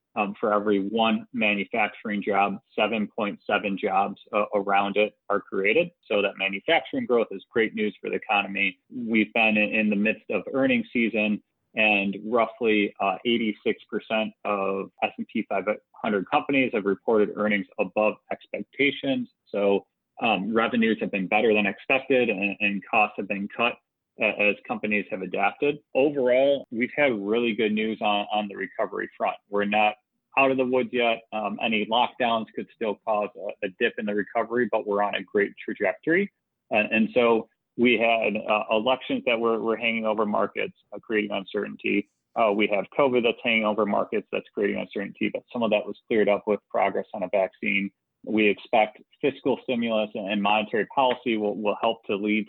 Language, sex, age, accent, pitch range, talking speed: English, male, 30-49, American, 105-115 Hz, 175 wpm